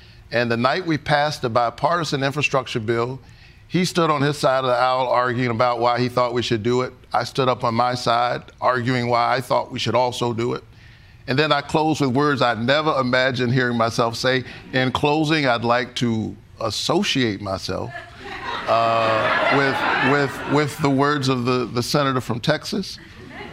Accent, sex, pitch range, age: American, male, 120-145 Hz, 50-69